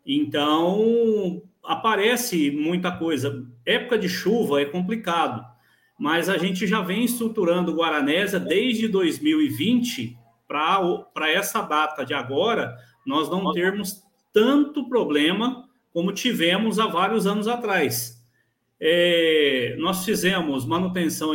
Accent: Brazilian